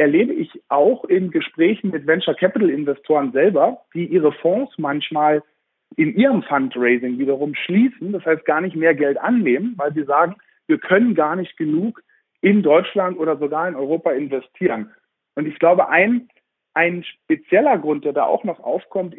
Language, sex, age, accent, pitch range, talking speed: German, male, 50-69, German, 150-205 Hz, 160 wpm